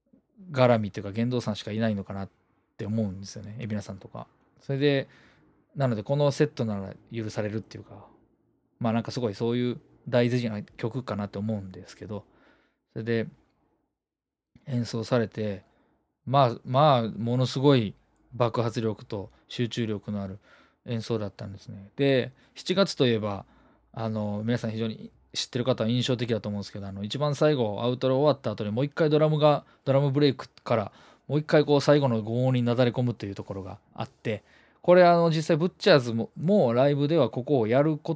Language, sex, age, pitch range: Japanese, male, 20-39, 110-140 Hz